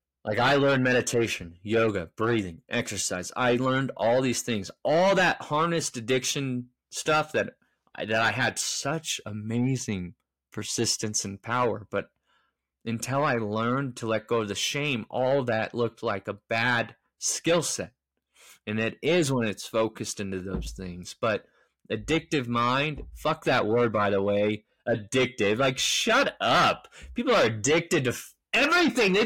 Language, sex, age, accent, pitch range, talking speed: English, male, 20-39, American, 115-150 Hz, 150 wpm